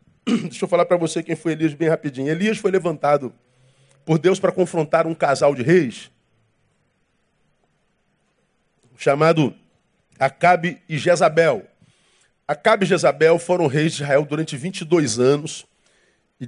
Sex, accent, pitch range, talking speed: male, Brazilian, 160-220 Hz, 130 wpm